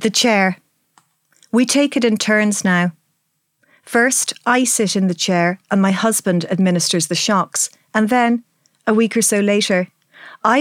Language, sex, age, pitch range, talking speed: English, female, 40-59, 185-235 Hz, 160 wpm